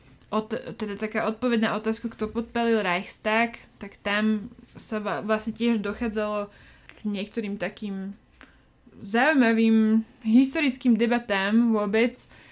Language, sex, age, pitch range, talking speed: Slovak, female, 20-39, 205-235 Hz, 100 wpm